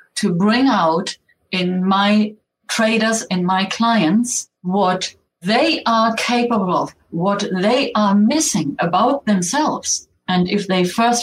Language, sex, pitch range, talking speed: English, female, 175-225 Hz, 130 wpm